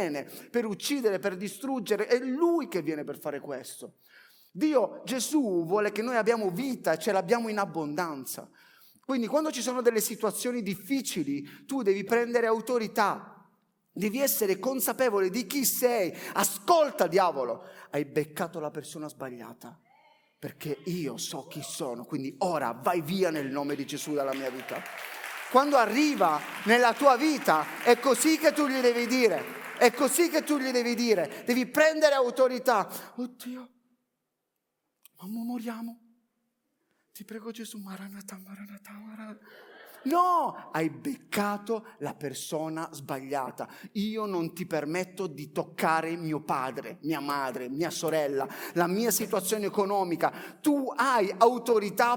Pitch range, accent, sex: 180-250 Hz, native, male